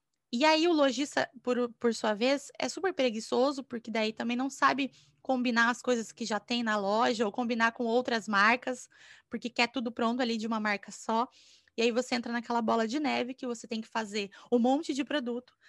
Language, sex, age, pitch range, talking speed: Portuguese, female, 20-39, 225-275 Hz, 210 wpm